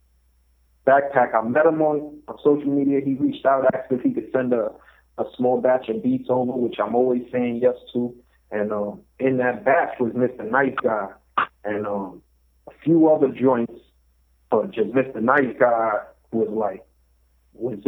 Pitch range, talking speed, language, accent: 105-125 Hz, 175 wpm, English, American